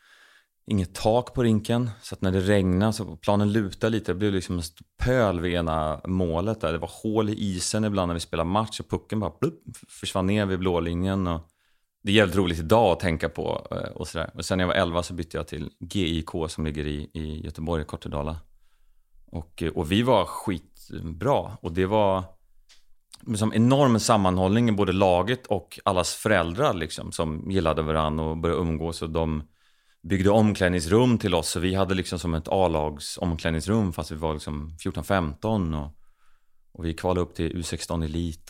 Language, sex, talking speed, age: Swedish, male, 185 wpm, 30-49